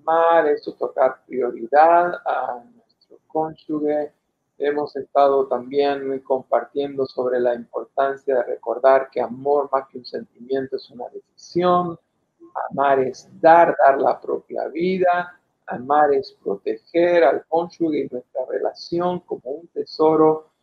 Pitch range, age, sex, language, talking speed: 140-195 Hz, 50-69, male, Spanish, 130 wpm